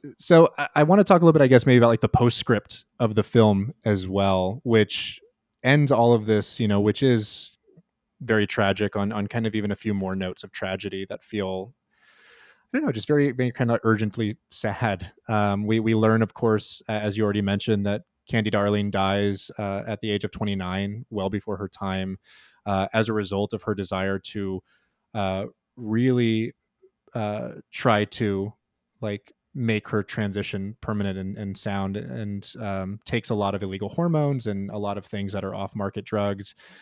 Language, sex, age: English, male, 20-39